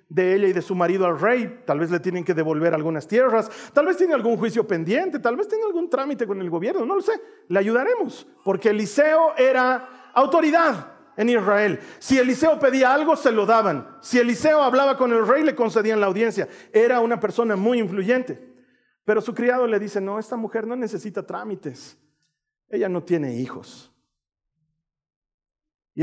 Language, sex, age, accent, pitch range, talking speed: Spanish, male, 40-59, Mexican, 185-255 Hz, 180 wpm